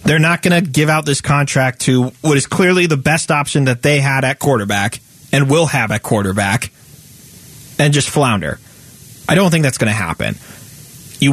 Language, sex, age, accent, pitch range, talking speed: English, male, 30-49, American, 125-165 Hz, 190 wpm